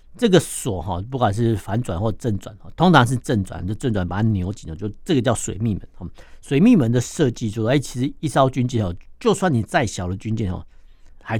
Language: Chinese